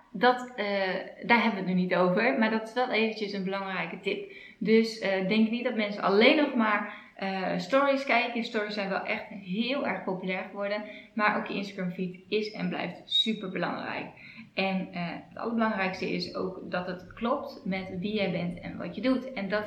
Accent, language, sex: Dutch, Dutch, female